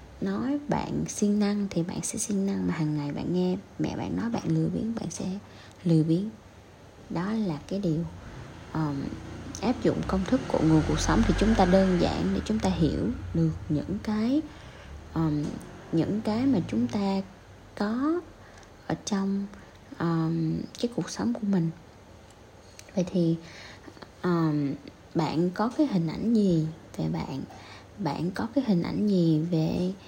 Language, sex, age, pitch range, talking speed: Vietnamese, female, 20-39, 160-220 Hz, 155 wpm